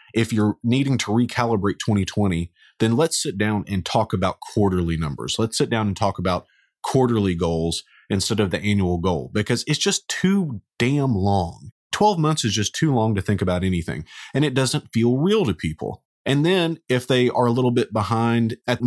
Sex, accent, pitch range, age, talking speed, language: male, American, 95-120 Hz, 30-49, 195 wpm, English